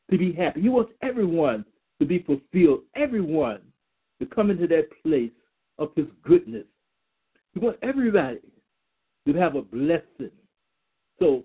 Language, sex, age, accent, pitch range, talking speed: English, male, 60-79, American, 155-230 Hz, 135 wpm